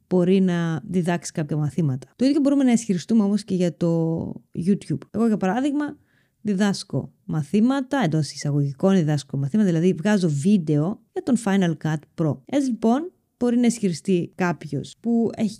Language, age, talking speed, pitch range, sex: Greek, 20-39, 155 wpm, 170-235 Hz, female